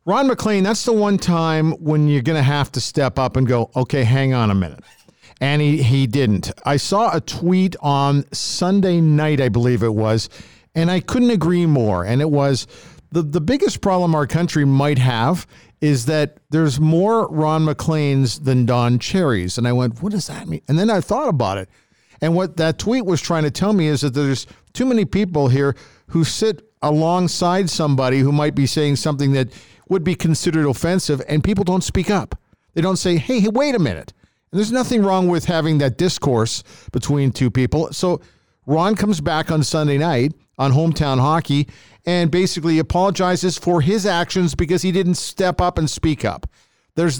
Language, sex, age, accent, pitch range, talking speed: English, male, 50-69, American, 135-180 Hz, 195 wpm